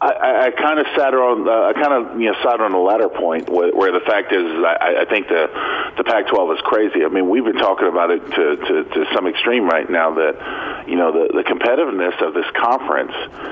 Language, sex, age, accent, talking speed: English, male, 40-59, American, 235 wpm